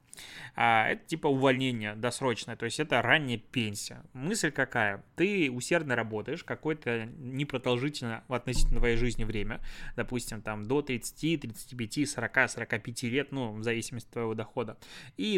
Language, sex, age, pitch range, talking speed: Russian, male, 20-39, 120-150 Hz, 140 wpm